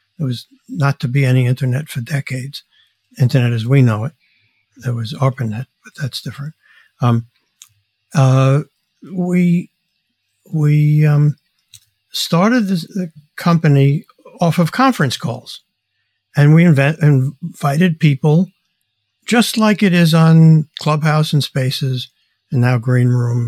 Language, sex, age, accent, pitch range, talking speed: English, male, 60-79, American, 130-160 Hz, 125 wpm